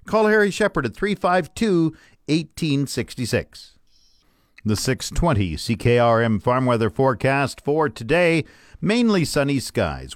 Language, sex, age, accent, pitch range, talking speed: English, male, 50-69, American, 105-145 Hz, 95 wpm